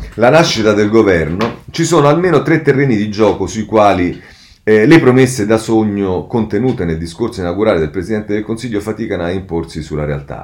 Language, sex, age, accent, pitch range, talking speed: Italian, male, 40-59, native, 75-105 Hz, 180 wpm